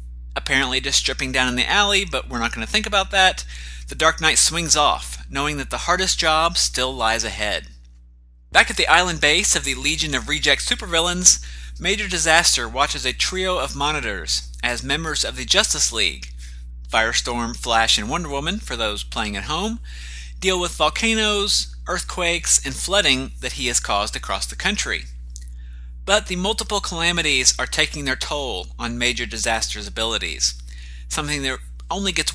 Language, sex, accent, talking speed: English, male, American, 170 wpm